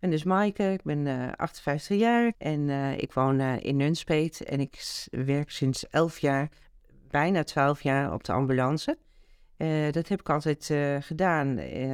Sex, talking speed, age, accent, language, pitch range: female, 175 wpm, 40-59, Dutch, Dutch, 135-170 Hz